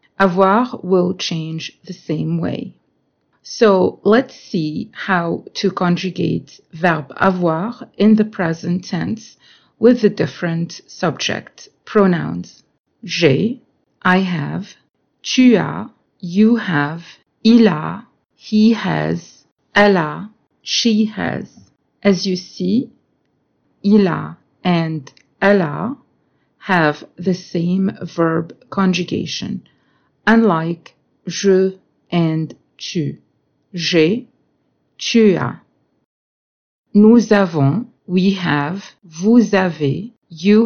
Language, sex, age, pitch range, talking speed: English, female, 50-69, 165-215 Hz, 95 wpm